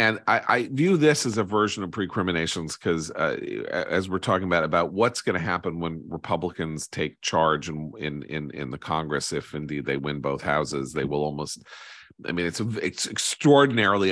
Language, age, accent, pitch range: English, 40-59, American, 75-100 Hz